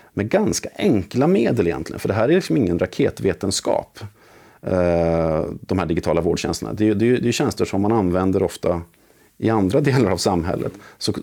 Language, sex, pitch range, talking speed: Swedish, male, 85-105 Hz, 160 wpm